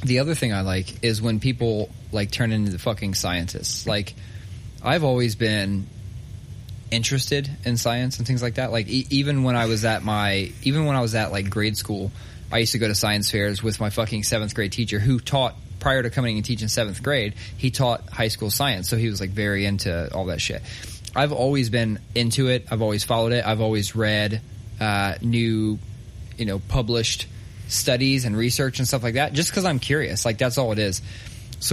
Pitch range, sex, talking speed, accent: 105-125 Hz, male, 210 wpm, American